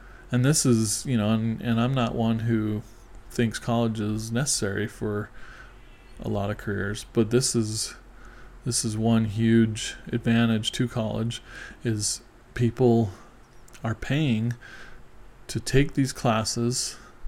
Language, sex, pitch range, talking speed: English, male, 115-125 Hz, 130 wpm